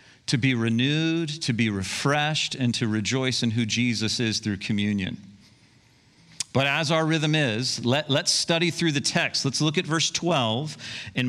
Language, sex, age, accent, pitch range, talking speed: English, male, 50-69, American, 120-165 Hz, 165 wpm